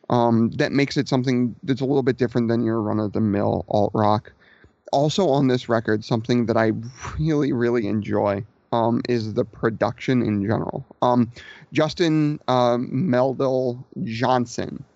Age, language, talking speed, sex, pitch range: 30-49, English, 140 wpm, male, 115-130 Hz